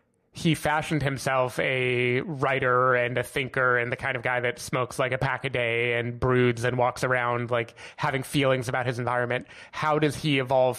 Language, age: English, 30-49